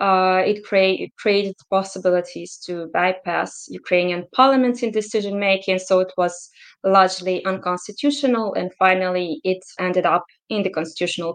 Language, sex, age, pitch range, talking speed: English, female, 20-39, 175-200 Hz, 130 wpm